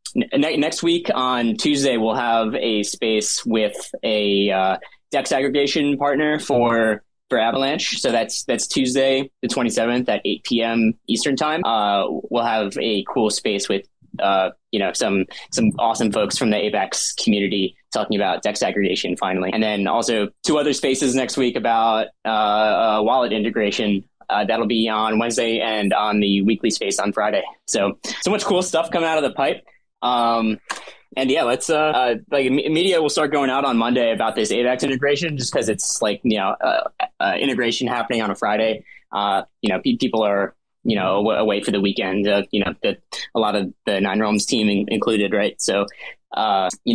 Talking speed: 190 wpm